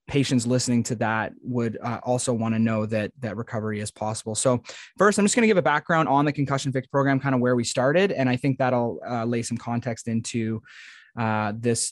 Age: 20-39